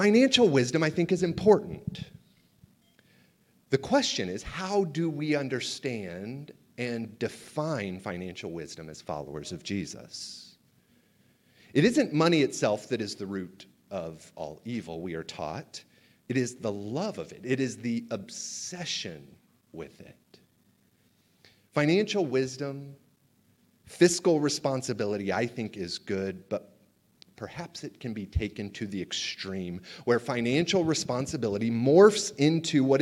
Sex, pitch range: male, 110-160 Hz